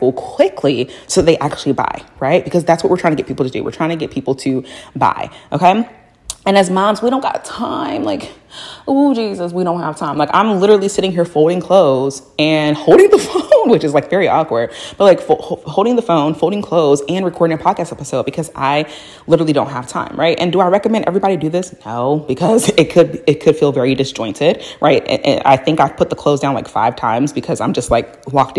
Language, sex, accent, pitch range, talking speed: English, female, American, 140-185 Hz, 230 wpm